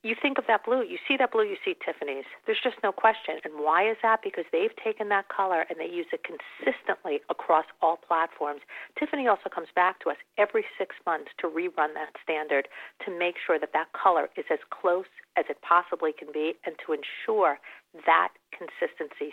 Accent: American